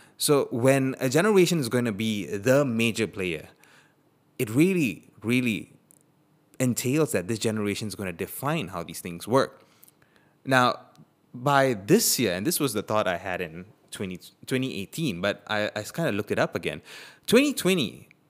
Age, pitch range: 20-39, 105-150 Hz